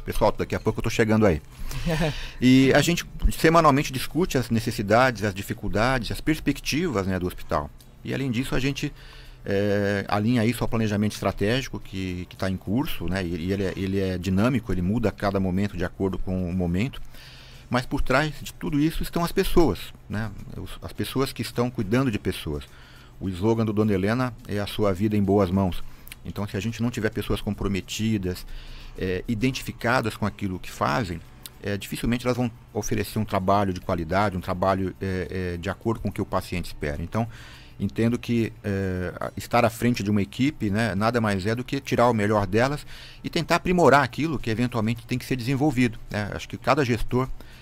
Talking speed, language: 190 wpm, Portuguese